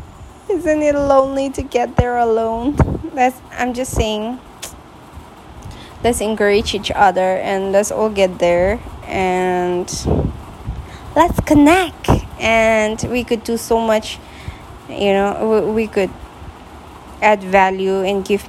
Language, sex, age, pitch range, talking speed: English, female, 20-39, 185-220 Hz, 120 wpm